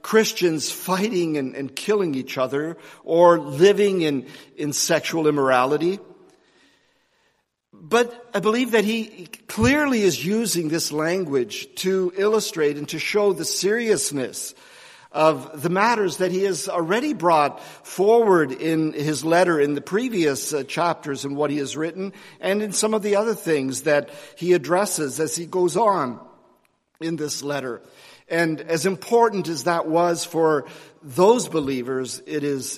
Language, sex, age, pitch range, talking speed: English, male, 50-69, 150-205 Hz, 145 wpm